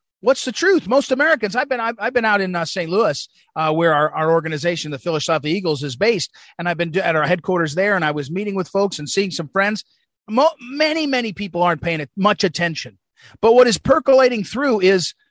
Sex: male